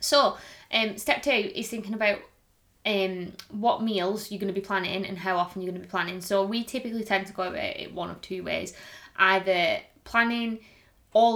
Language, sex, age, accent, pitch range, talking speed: English, female, 20-39, British, 180-205 Hz, 200 wpm